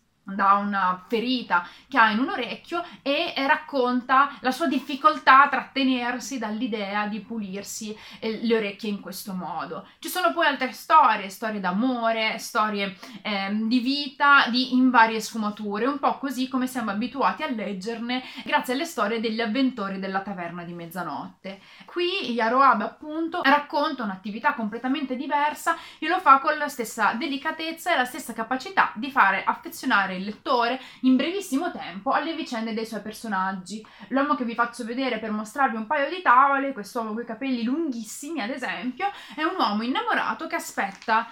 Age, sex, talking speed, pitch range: 30-49, female, 160 wpm, 210-275 Hz